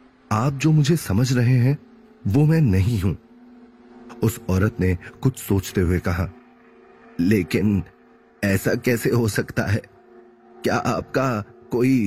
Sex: male